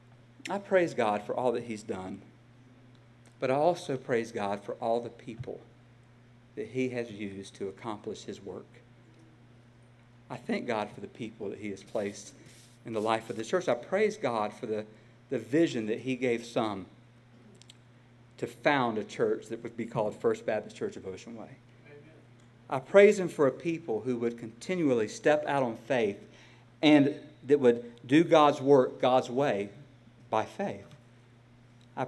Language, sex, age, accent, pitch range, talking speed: English, male, 50-69, American, 120-185 Hz, 170 wpm